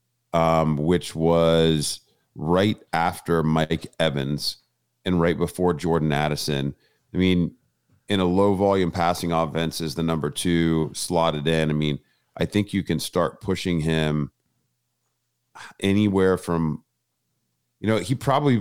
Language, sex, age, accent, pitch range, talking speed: English, male, 40-59, American, 80-90 Hz, 130 wpm